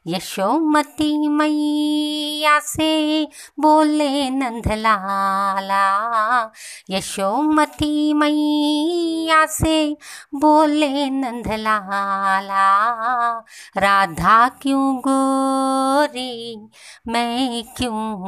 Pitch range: 235-305 Hz